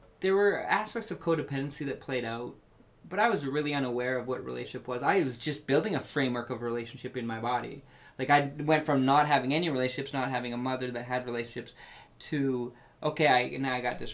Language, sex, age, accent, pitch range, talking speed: English, male, 20-39, American, 120-155 Hz, 210 wpm